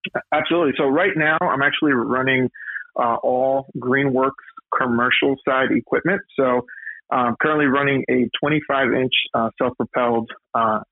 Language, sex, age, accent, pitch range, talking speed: English, male, 20-39, American, 115-130 Hz, 130 wpm